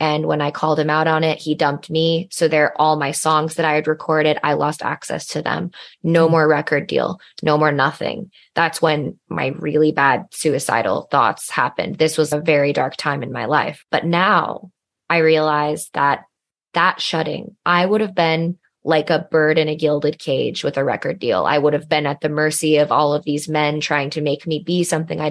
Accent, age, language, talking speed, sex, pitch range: American, 20-39, English, 215 wpm, female, 150-165 Hz